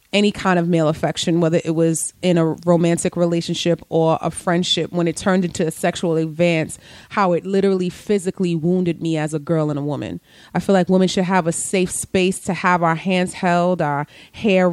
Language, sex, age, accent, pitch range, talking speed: English, female, 30-49, American, 170-195 Hz, 205 wpm